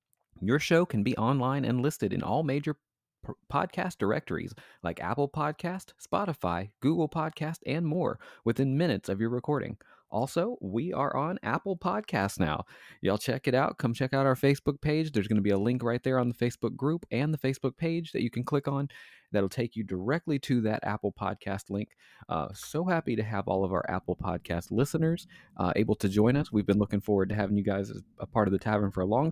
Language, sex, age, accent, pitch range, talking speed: English, male, 30-49, American, 100-150 Hz, 215 wpm